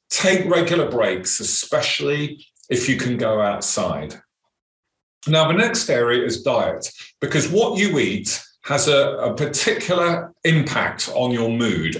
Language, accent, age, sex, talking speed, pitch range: English, British, 40-59, male, 135 wpm, 120-170 Hz